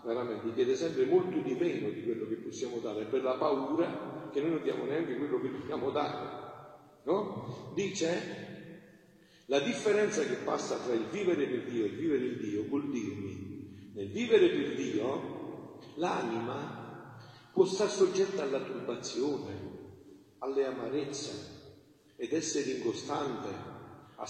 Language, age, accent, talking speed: Italian, 40-59, native, 140 wpm